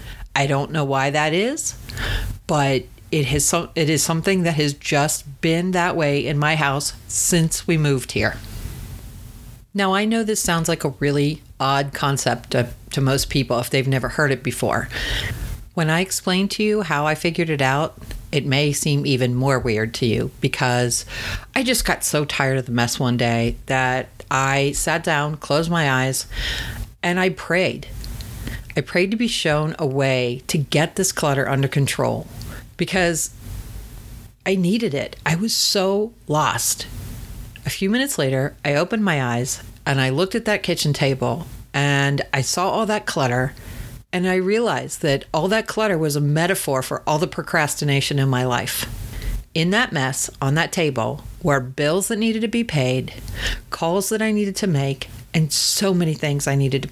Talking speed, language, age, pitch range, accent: 180 wpm, English, 40-59, 120-165 Hz, American